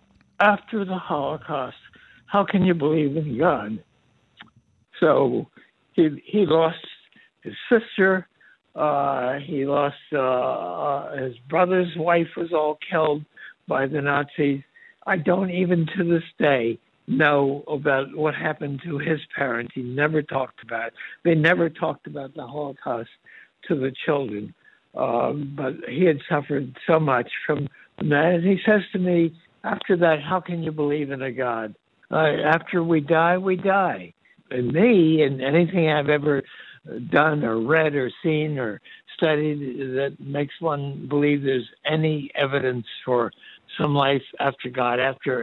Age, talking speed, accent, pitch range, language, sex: 60-79, 145 wpm, American, 130-165 Hz, Hebrew, male